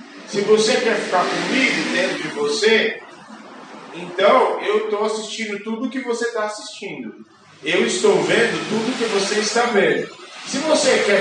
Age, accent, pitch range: 40-59, Brazilian, 155-220 Hz